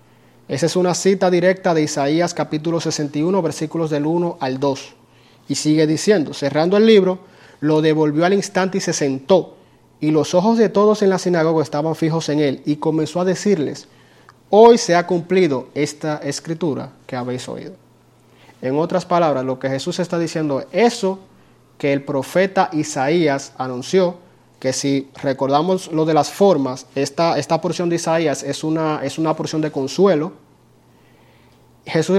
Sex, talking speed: male, 160 wpm